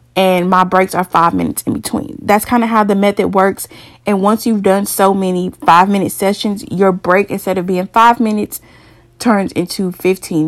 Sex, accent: female, American